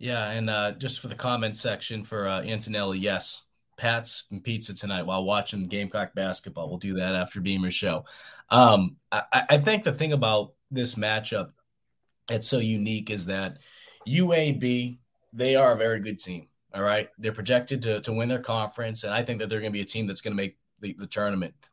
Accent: American